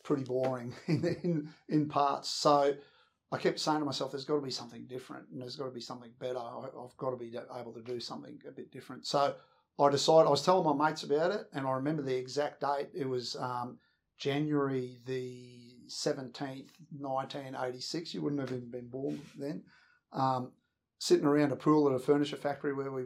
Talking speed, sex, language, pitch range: 200 wpm, male, English, 125-145 Hz